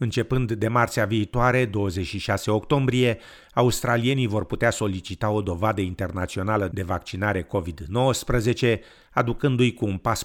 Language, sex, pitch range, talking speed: Romanian, male, 95-115 Hz, 115 wpm